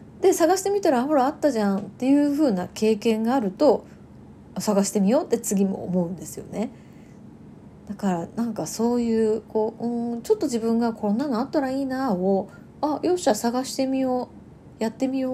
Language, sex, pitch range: Japanese, female, 190-260 Hz